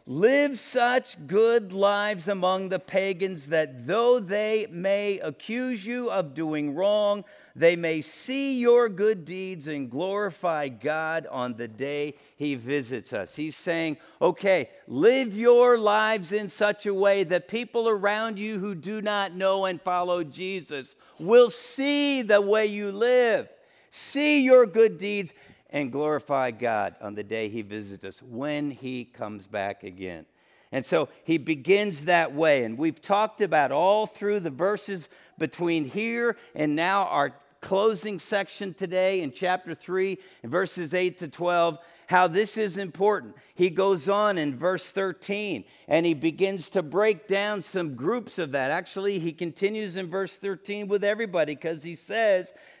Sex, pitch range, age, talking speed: male, 160-210 Hz, 50-69, 155 wpm